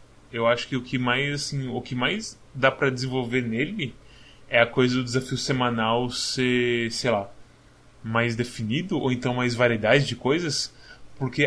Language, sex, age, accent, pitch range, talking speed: Portuguese, male, 10-29, Brazilian, 115-130 Hz, 165 wpm